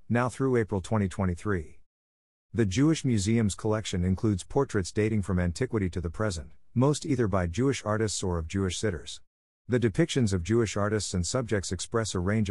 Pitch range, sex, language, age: 90-115 Hz, male, English, 50-69